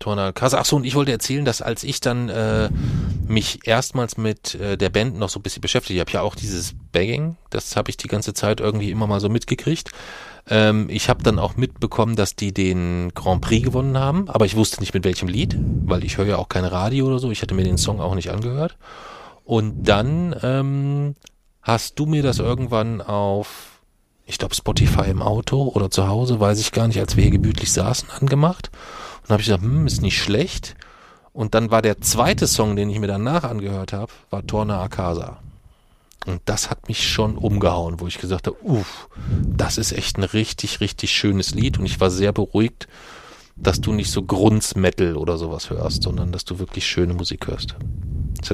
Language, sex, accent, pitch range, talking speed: German, male, German, 95-120 Hz, 205 wpm